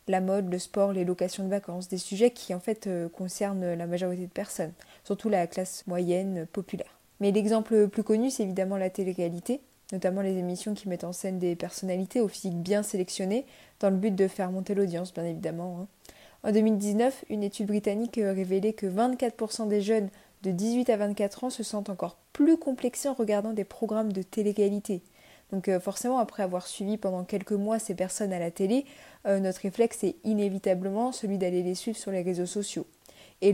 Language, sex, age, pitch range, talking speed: French, female, 20-39, 185-215 Hz, 190 wpm